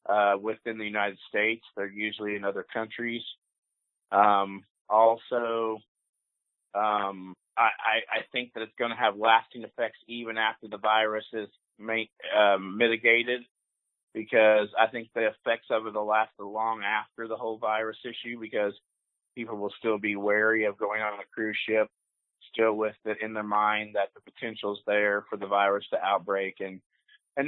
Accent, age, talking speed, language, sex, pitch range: American, 30-49, 165 wpm, English, male, 105-125 Hz